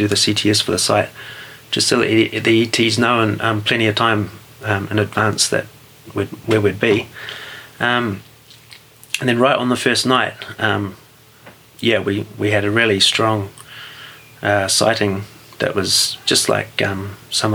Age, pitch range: 30-49, 105-115 Hz